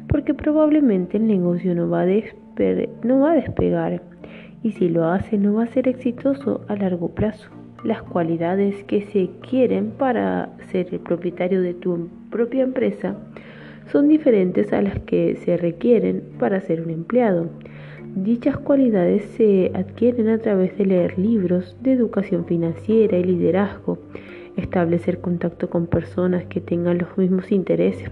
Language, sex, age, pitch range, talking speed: Spanish, female, 20-39, 170-230 Hz, 150 wpm